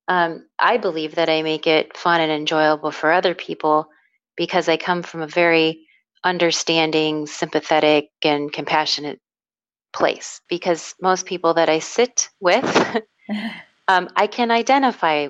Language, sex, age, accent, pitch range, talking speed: English, female, 30-49, American, 155-180 Hz, 135 wpm